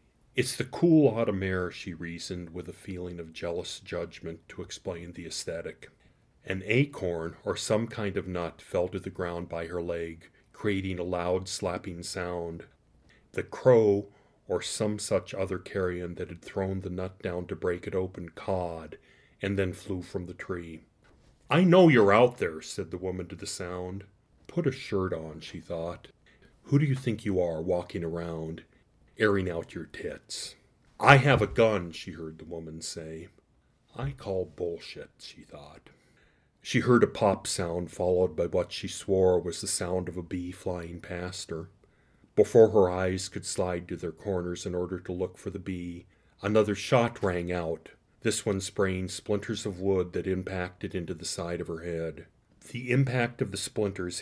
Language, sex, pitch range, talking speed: English, male, 85-100 Hz, 175 wpm